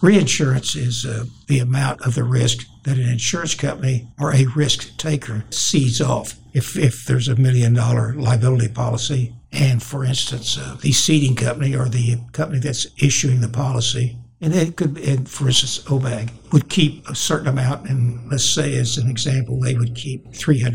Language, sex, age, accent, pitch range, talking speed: English, male, 60-79, American, 120-140 Hz, 175 wpm